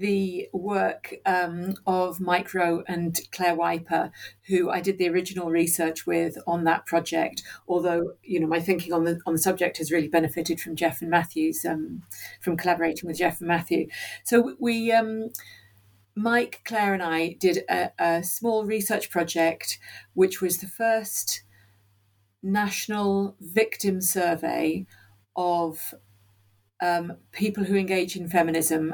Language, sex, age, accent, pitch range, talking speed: English, female, 50-69, British, 165-195 Hz, 145 wpm